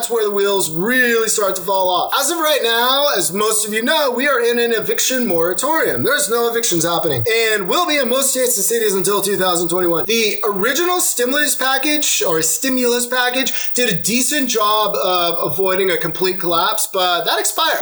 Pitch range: 195-275 Hz